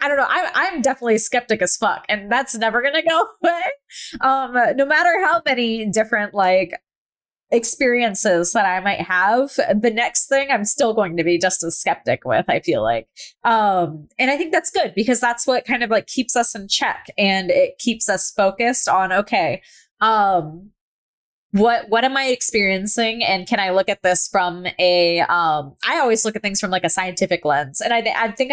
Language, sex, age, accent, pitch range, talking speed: English, female, 20-39, American, 185-245 Hz, 200 wpm